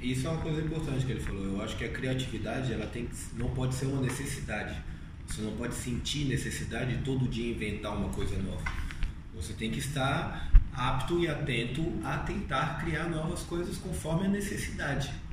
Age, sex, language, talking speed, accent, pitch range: 20-39, male, Portuguese, 190 wpm, Brazilian, 105-140 Hz